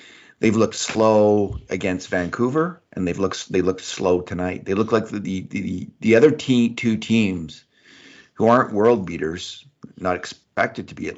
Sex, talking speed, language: male, 170 wpm, English